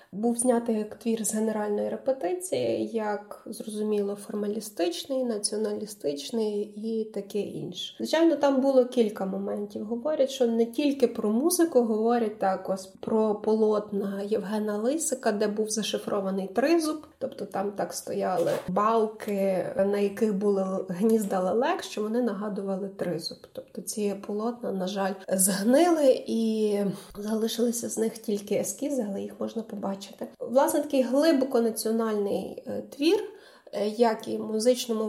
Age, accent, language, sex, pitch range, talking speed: 20-39, native, Ukrainian, female, 205-245 Hz, 125 wpm